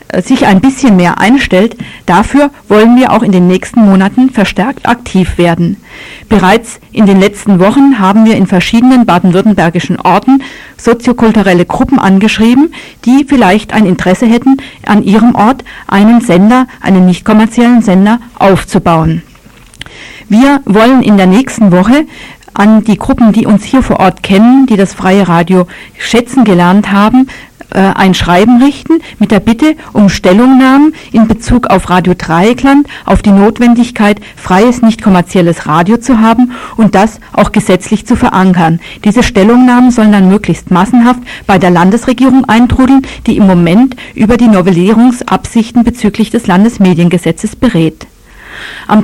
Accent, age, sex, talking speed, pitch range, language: German, 50-69, female, 140 wpm, 190-245 Hz, German